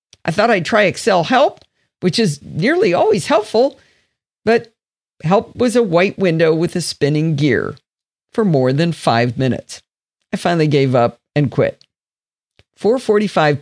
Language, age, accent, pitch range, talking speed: English, 50-69, American, 155-245 Hz, 145 wpm